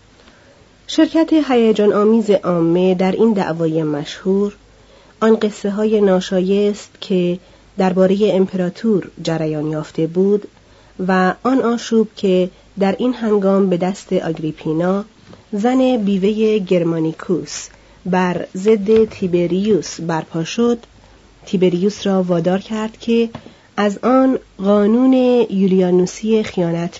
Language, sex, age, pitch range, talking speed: Persian, female, 40-59, 170-220 Hz, 100 wpm